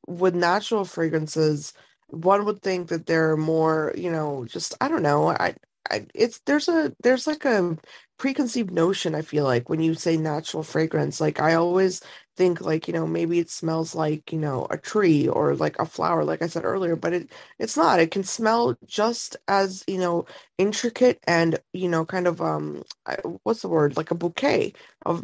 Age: 20-39